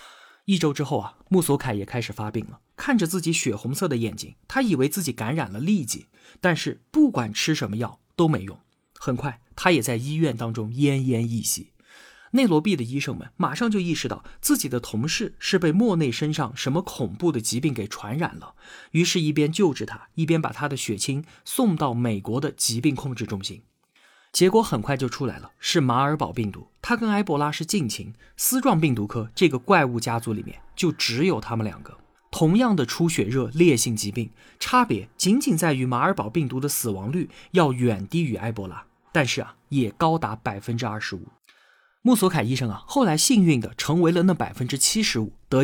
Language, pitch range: Chinese, 115-170 Hz